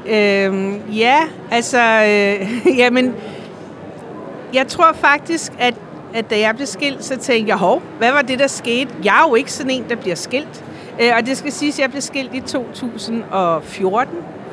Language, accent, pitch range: Danish, native, 220-270 Hz